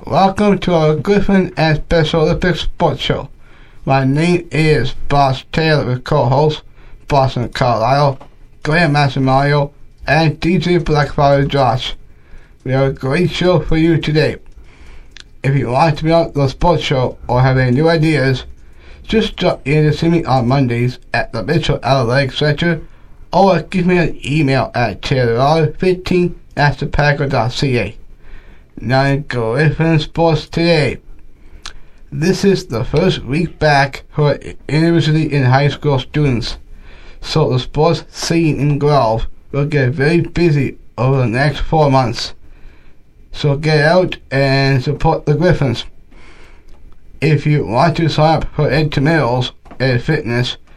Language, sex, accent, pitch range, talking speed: English, male, American, 125-155 Hz, 135 wpm